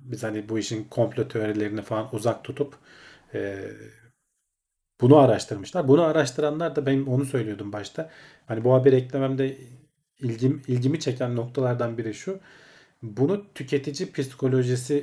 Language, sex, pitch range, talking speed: Turkish, male, 110-145 Hz, 130 wpm